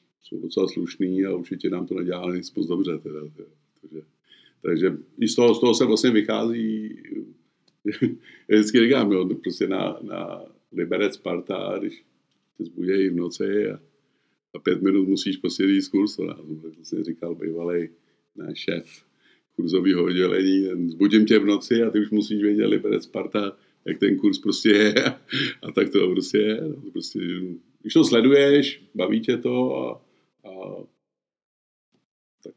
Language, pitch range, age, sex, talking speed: Czech, 90-115 Hz, 50-69, male, 145 wpm